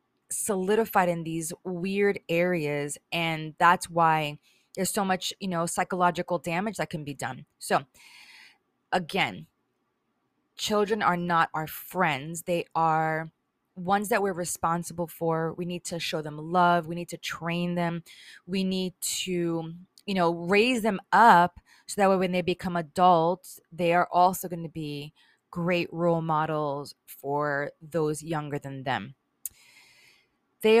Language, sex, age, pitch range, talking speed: English, female, 20-39, 165-200 Hz, 145 wpm